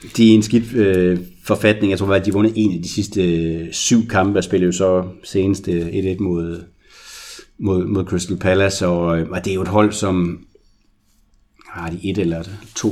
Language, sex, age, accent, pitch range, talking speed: Danish, male, 30-49, native, 90-105 Hz, 185 wpm